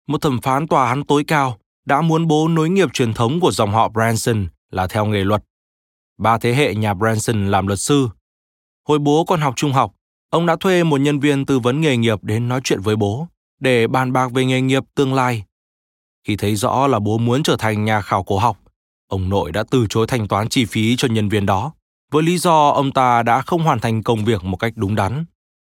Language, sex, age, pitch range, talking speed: Vietnamese, male, 20-39, 105-140 Hz, 230 wpm